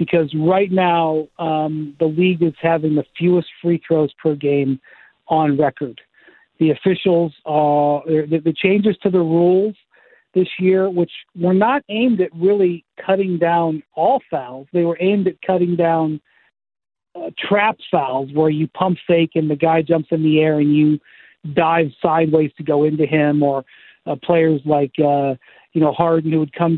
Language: English